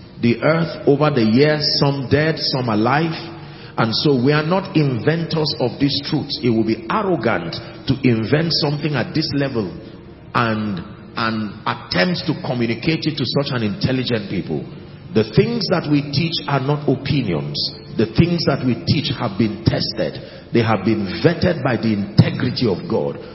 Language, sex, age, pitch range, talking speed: English, male, 40-59, 120-155 Hz, 165 wpm